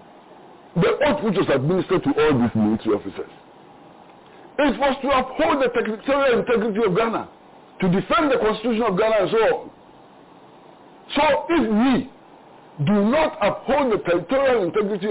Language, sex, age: English, male, 50-69